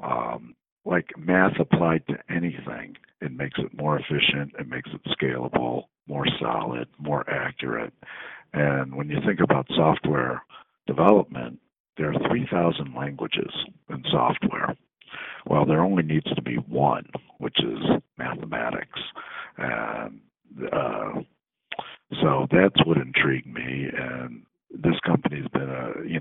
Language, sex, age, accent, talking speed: English, male, 60-79, American, 125 wpm